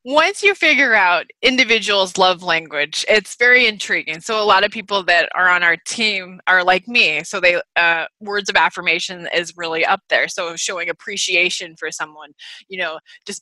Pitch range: 175-220 Hz